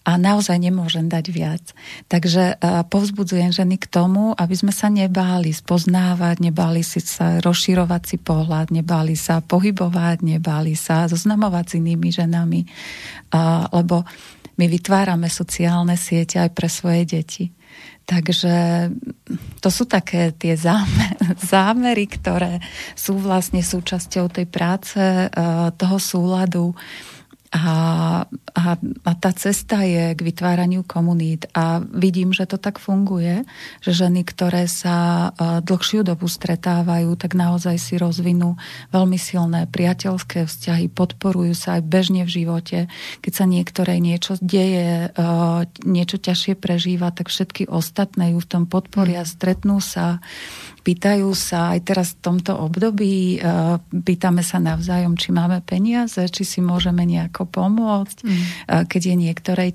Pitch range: 170-185 Hz